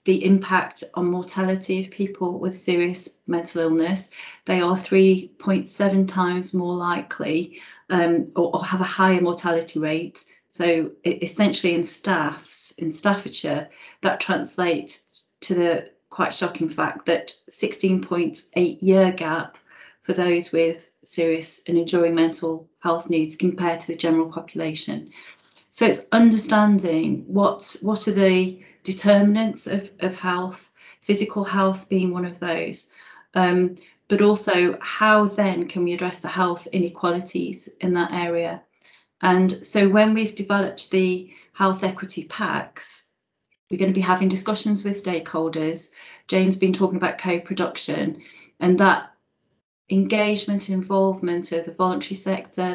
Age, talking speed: 30-49, 130 wpm